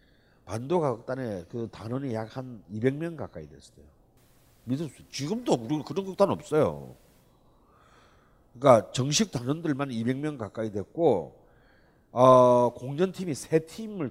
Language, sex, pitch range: Korean, male, 115-160 Hz